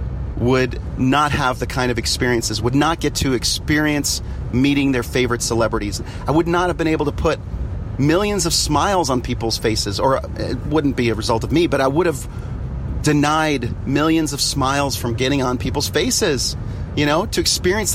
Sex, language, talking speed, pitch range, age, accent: male, English, 185 wpm, 110-150 Hz, 40-59, American